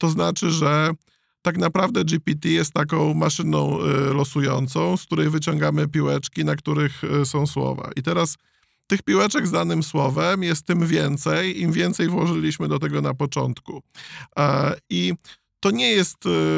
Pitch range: 140-180 Hz